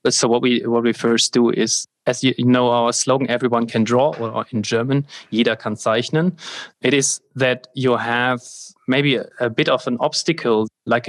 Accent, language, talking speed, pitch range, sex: German, English, 190 wpm, 115-125 Hz, male